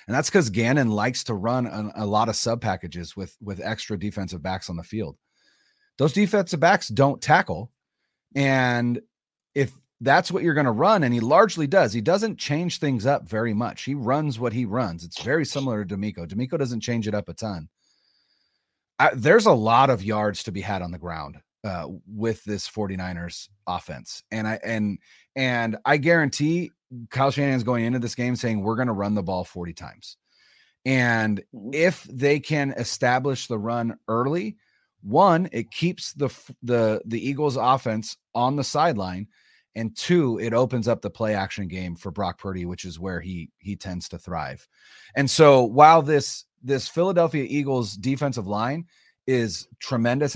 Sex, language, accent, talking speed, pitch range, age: male, English, American, 180 wpm, 105-140 Hz, 30-49